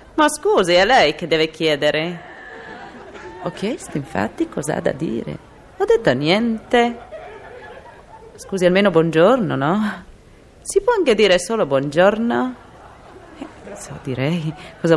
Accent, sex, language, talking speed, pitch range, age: native, female, Italian, 130 wpm, 165-260 Hz, 30-49